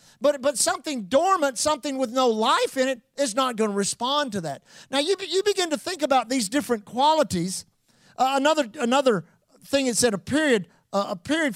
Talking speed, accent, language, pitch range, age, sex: 200 wpm, American, English, 215-280 Hz, 50-69, male